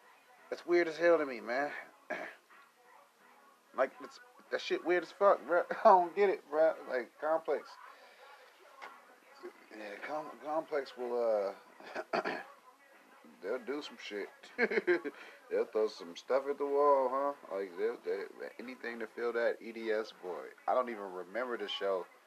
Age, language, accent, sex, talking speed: 30-49, English, American, male, 145 wpm